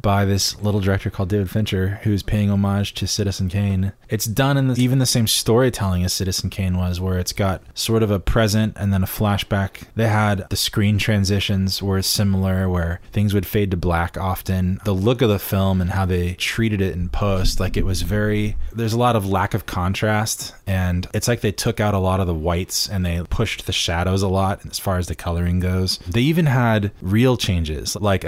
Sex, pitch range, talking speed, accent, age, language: male, 90-105 Hz, 215 wpm, American, 20-39, English